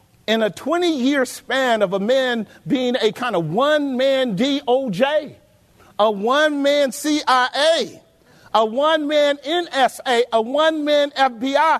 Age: 50-69